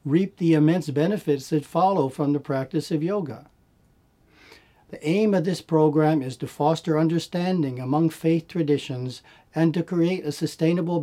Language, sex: English, male